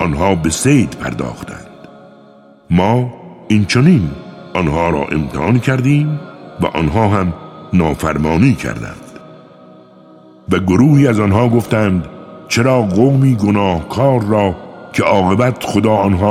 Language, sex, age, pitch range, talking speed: Persian, male, 60-79, 80-120 Hz, 105 wpm